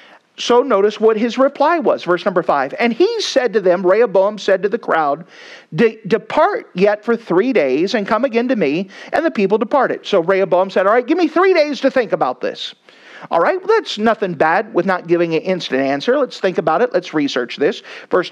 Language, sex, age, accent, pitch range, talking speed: English, male, 50-69, American, 200-325 Hz, 215 wpm